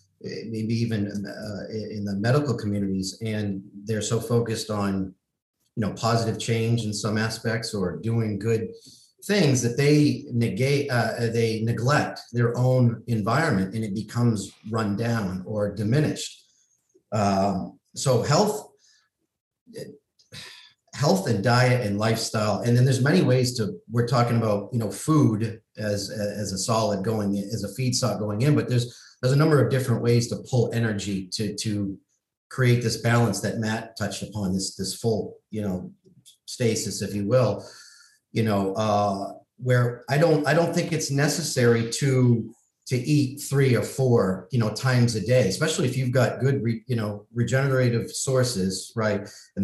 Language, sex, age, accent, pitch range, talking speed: English, male, 40-59, American, 105-125 Hz, 160 wpm